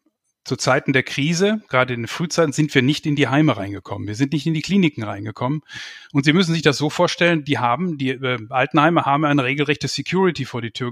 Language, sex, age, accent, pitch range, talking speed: German, male, 10-29, German, 130-155 Hz, 225 wpm